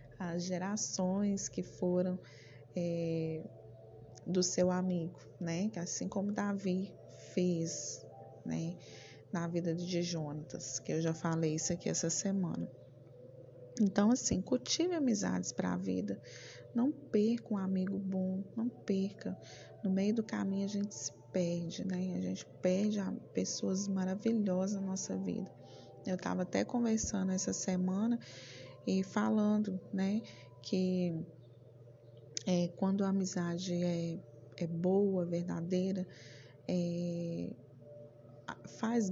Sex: female